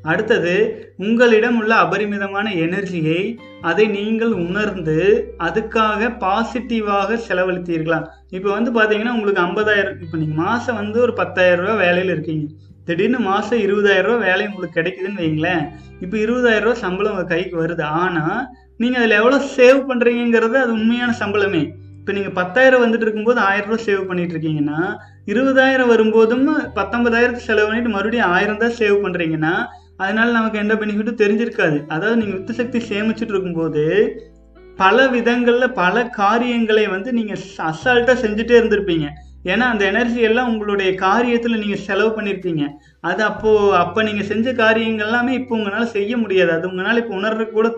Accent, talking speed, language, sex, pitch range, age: native, 140 wpm, Tamil, male, 185-235 Hz, 30-49